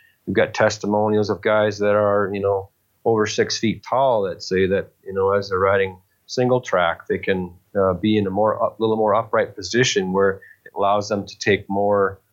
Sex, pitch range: male, 90-105 Hz